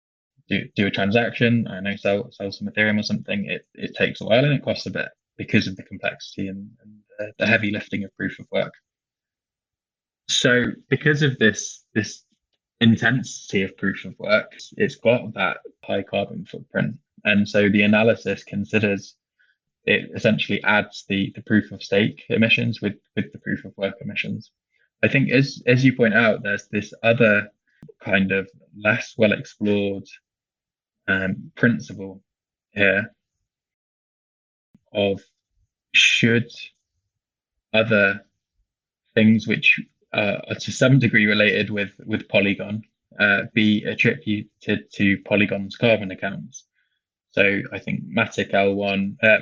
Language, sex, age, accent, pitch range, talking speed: English, male, 20-39, British, 100-110 Hz, 145 wpm